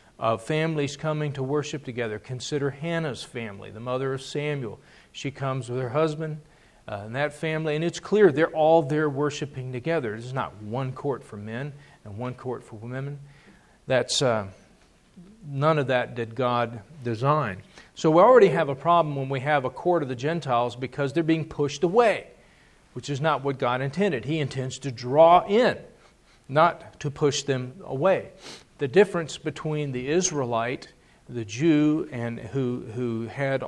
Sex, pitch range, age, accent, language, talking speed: male, 125-155 Hz, 40-59, American, English, 170 wpm